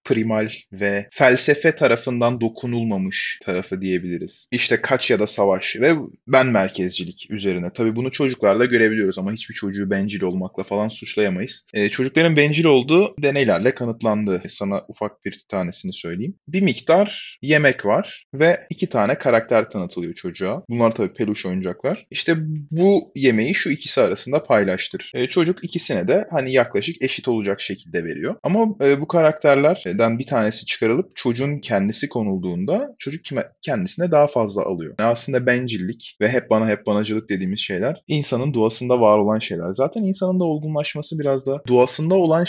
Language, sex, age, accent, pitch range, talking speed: Turkish, male, 30-49, native, 105-145 Hz, 155 wpm